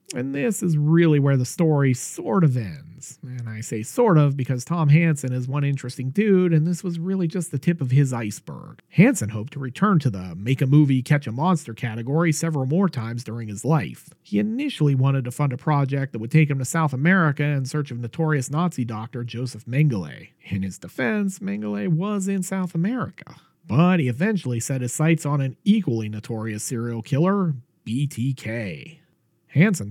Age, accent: 40-59, American